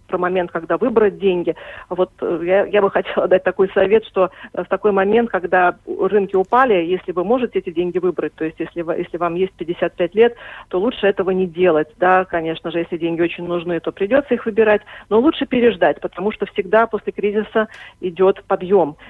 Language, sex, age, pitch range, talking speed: Russian, female, 40-59, 175-210 Hz, 190 wpm